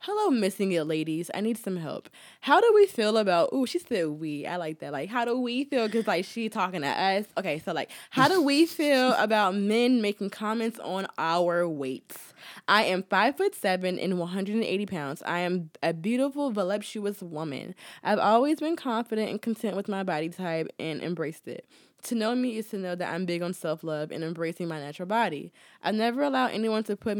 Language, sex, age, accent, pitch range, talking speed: English, female, 20-39, American, 170-220 Hz, 205 wpm